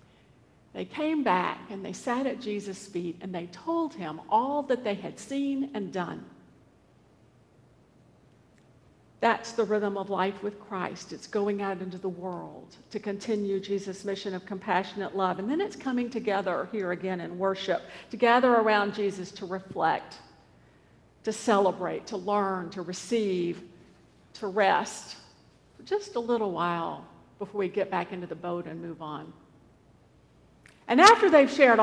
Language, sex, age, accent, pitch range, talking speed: English, female, 50-69, American, 185-220 Hz, 155 wpm